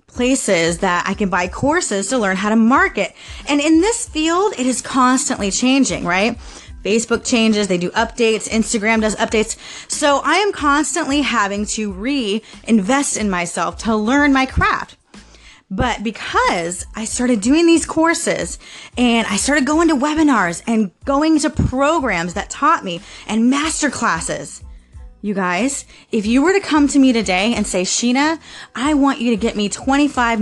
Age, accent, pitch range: 20-39, American, 210-290 Hz